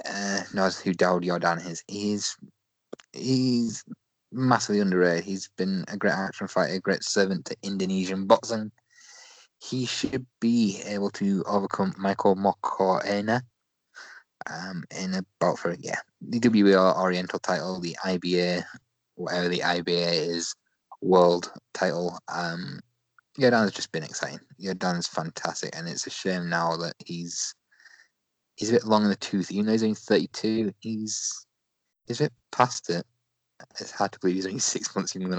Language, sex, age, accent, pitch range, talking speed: English, male, 20-39, British, 90-115 Hz, 155 wpm